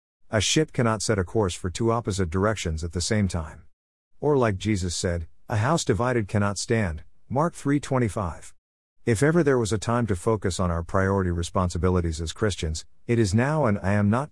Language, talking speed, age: English, 195 wpm, 50-69